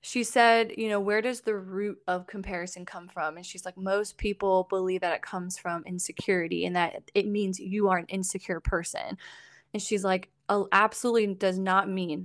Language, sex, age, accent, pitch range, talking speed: English, female, 20-39, American, 180-205 Hz, 195 wpm